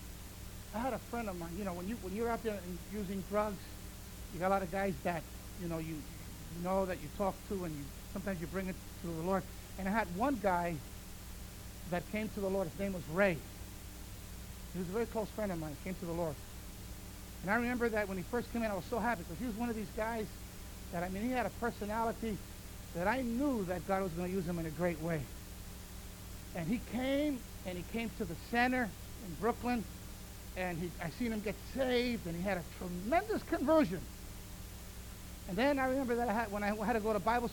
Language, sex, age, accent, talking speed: English, male, 50-69, American, 235 wpm